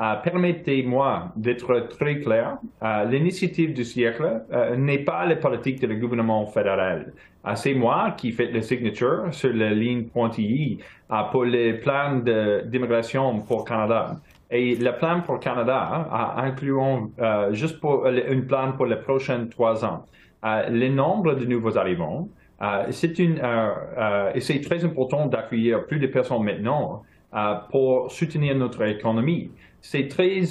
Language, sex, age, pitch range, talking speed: French, male, 30-49, 115-145 Hz, 160 wpm